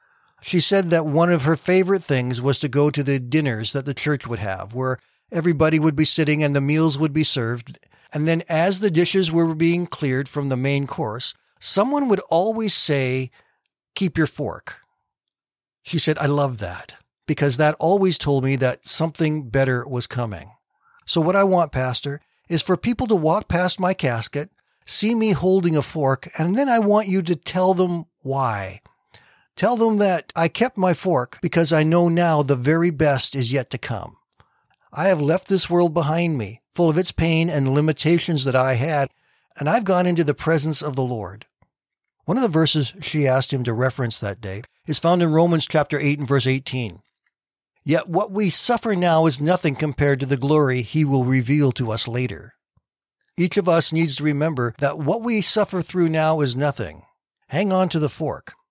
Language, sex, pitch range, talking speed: English, male, 135-175 Hz, 195 wpm